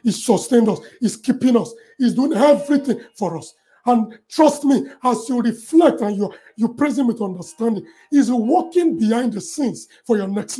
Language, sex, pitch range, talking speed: English, male, 225-285 Hz, 175 wpm